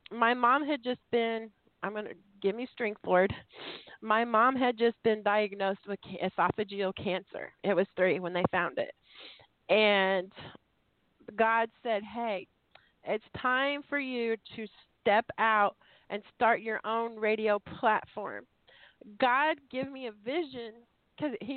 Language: English